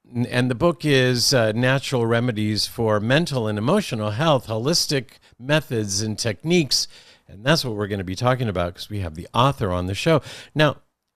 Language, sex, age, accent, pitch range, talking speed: English, male, 50-69, American, 105-140 Hz, 185 wpm